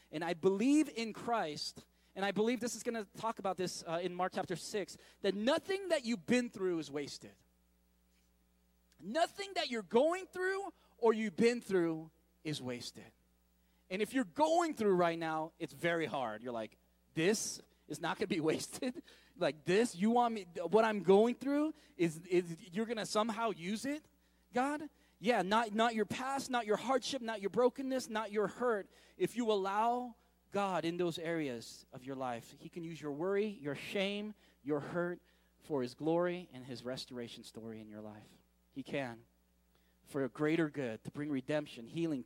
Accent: American